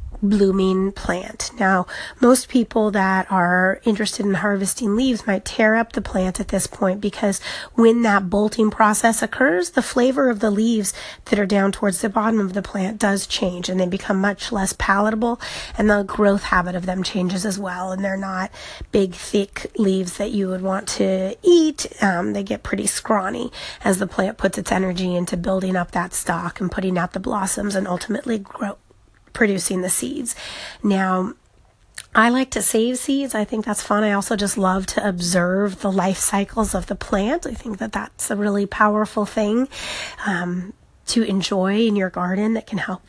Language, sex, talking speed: English, female, 185 wpm